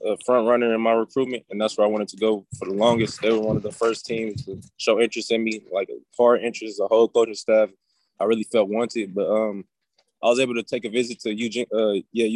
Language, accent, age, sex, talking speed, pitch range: English, American, 20-39, male, 255 wpm, 105-120 Hz